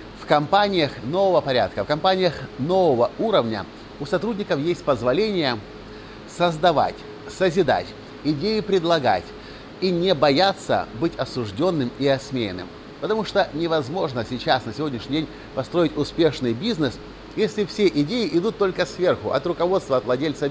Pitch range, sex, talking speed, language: 115-175 Hz, male, 125 wpm, Russian